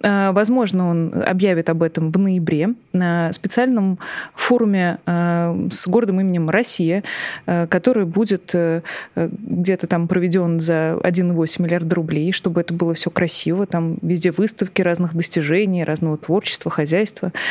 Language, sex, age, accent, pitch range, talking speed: Russian, female, 20-39, native, 170-210 Hz, 125 wpm